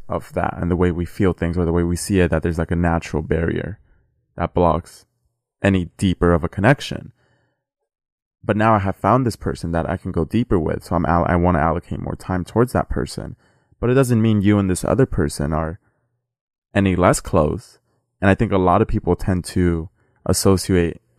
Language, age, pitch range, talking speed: English, 20-39, 85-115 Hz, 220 wpm